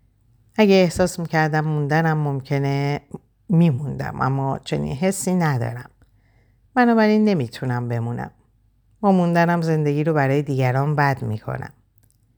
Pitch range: 115-160 Hz